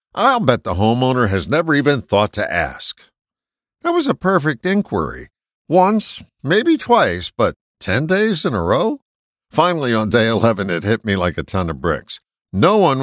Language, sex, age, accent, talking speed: English, male, 60-79, American, 175 wpm